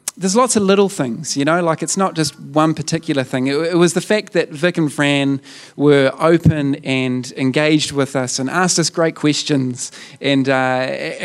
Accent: Australian